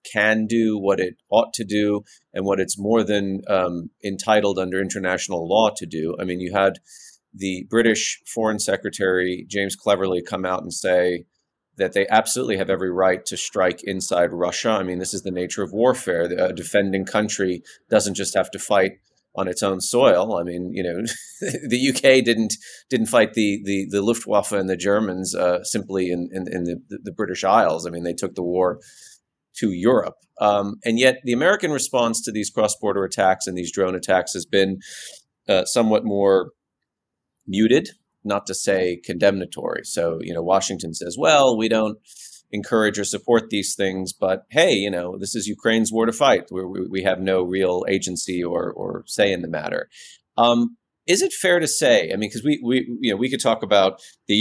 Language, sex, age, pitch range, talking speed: English, male, 30-49, 90-110 Hz, 190 wpm